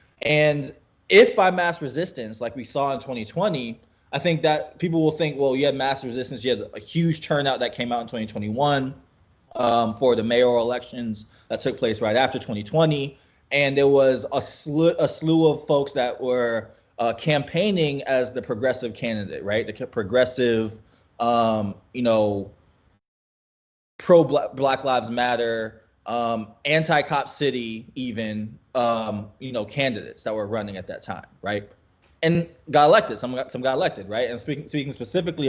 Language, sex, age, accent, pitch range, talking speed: English, male, 20-39, American, 115-140 Hz, 160 wpm